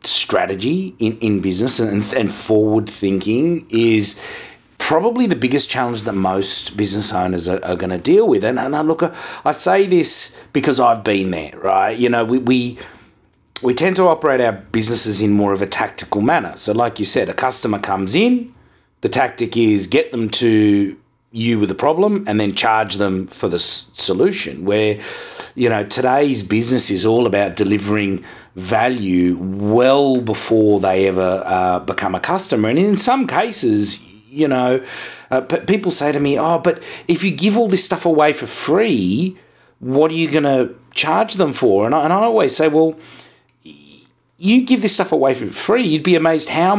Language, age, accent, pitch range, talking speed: English, 30-49, Australian, 105-160 Hz, 180 wpm